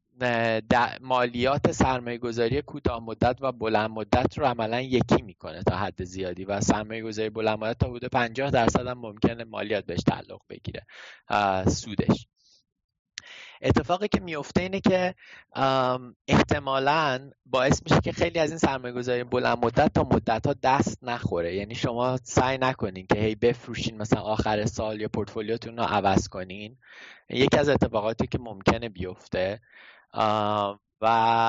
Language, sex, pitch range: Persian, male, 110-135 Hz